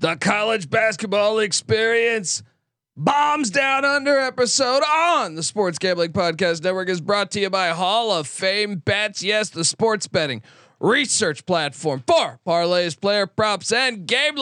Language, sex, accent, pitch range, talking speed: English, male, American, 160-220 Hz, 145 wpm